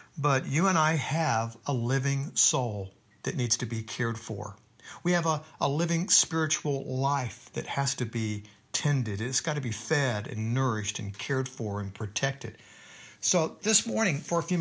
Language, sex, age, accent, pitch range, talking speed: English, male, 60-79, American, 115-145 Hz, 180 wpm